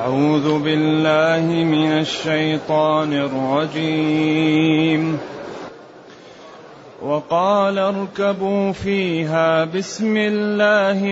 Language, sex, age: Arabic, male, 30-49